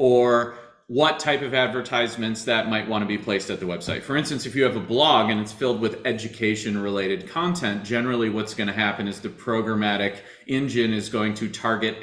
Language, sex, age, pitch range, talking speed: English, male, 30-49, 110-145 Hz, 205 wpm